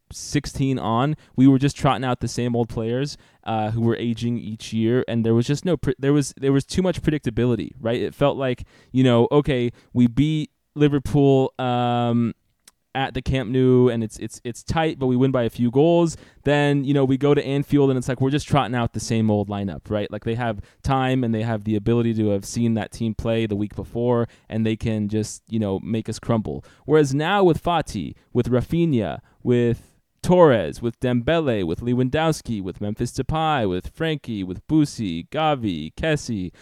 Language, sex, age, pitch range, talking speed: English, male, 20-39, 110-140 Hz, 200 wpm